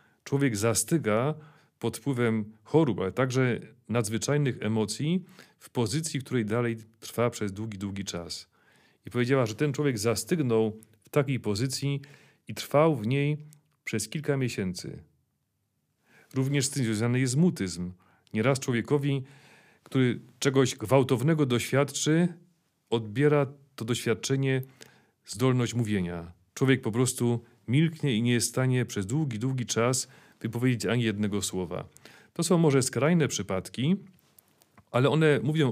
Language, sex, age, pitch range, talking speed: Polish, male, 40-59, 110-145 Hz, 125 wpm